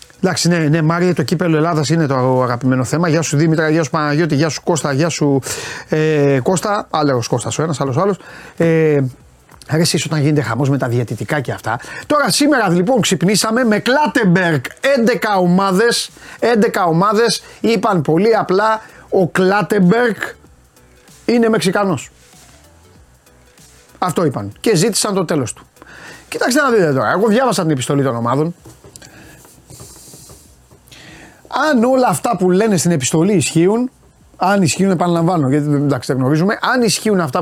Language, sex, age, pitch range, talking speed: Greek, male, 30-49, 145-220 Hz, 150 wpm